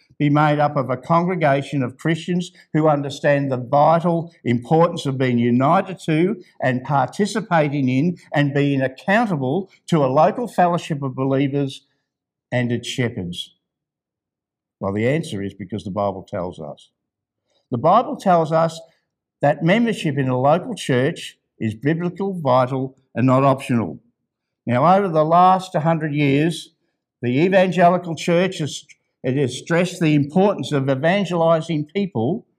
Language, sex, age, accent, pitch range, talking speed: English, male, 60-79, Australian, 130-165 Hz, 140 wpm